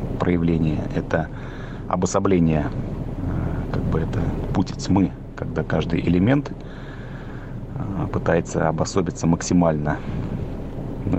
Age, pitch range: 30-49, 85-100 Hz